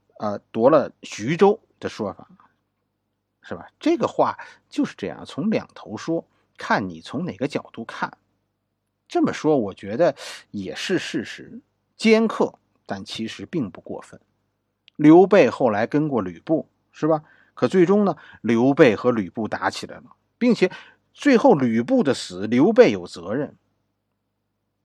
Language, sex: Chinese, male